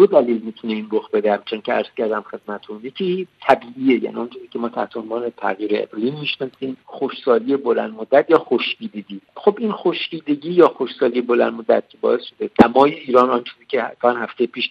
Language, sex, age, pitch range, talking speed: Persian, male, 50-69, 120-175 Hz, 165 wpm